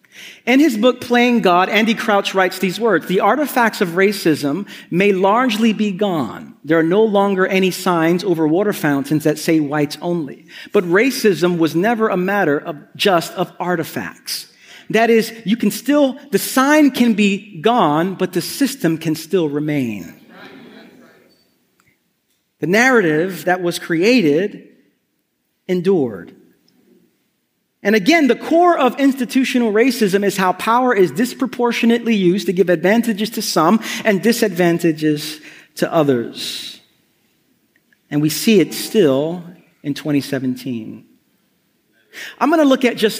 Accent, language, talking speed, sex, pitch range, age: American, English, 140 wpm, male, 165-225 Hz, 40-59